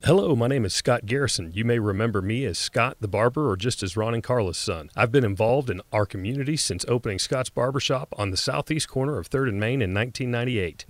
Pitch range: 105-135 Hz